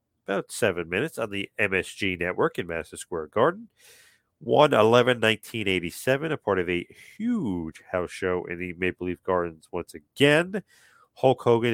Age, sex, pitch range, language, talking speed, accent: 40-59, male, 95-140 Hz, English, 155 wpm, American